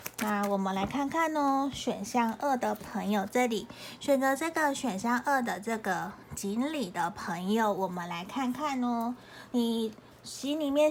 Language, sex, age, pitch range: Chinese, female, 20-39, 190-240 Hz